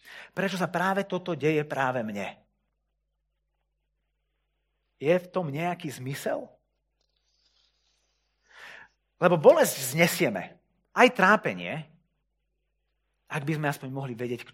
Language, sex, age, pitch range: Slovak, male, 30-49, 130-175 Hz